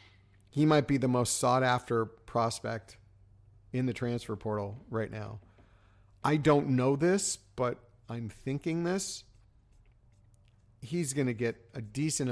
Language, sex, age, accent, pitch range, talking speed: English, male, 40-59, American, 100-135 Hz, 135 wpm